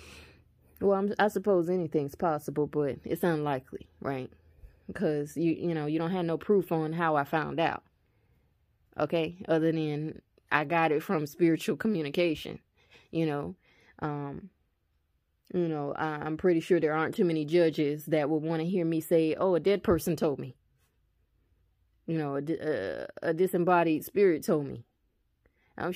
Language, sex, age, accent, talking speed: English, female, 20-39, American, 155 wpm